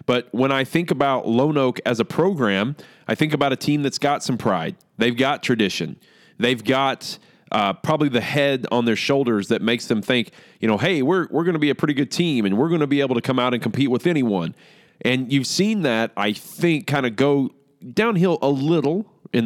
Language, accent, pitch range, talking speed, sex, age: English, American, 115-150 Hz, 225 wpm, male, 30-49